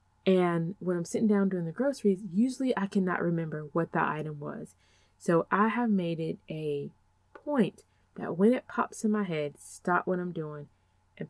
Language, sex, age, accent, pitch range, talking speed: English, female, 20-39, American, 150-210 Hz, 185 wpm